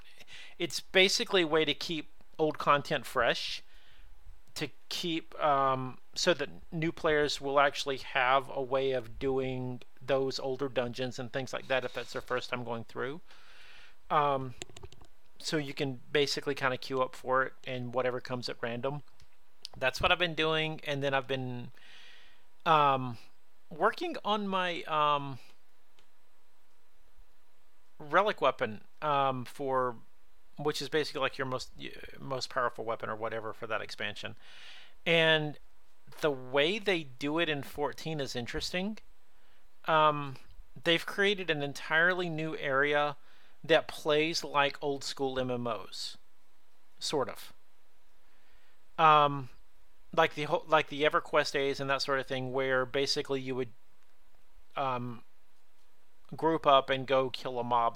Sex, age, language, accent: male, 40-59, English, American